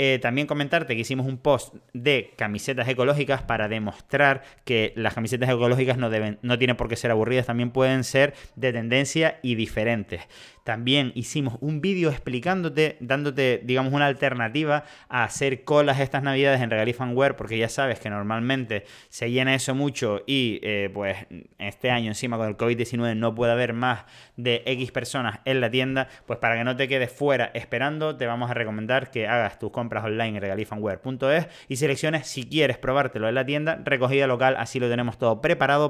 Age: 30-49